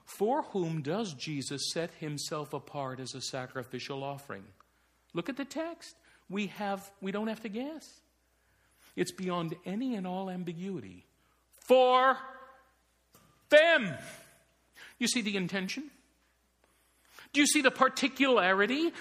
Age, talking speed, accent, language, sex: 50-69, 125 wpm, American, English, male